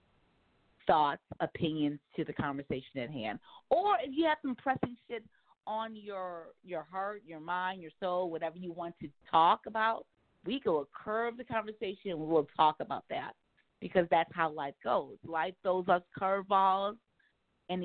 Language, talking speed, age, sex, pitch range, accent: English, 170 wpm, 40-59, female, 155-190 Hz, American